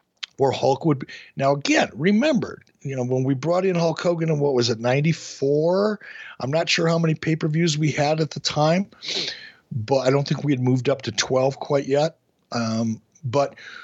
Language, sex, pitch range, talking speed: English, male, 125-175 Hz, 205 wpm